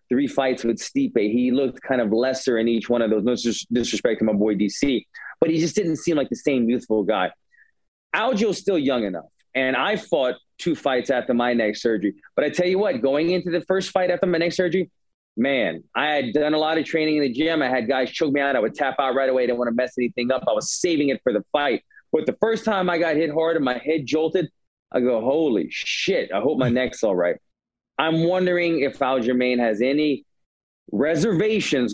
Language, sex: English, male